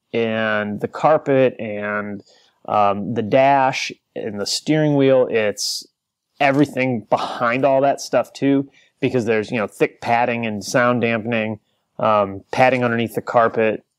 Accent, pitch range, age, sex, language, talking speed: American, 105-140 Hz, 30-49, male, English, 135 wpm